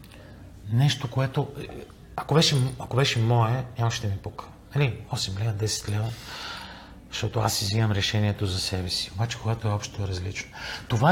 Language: Bulgarian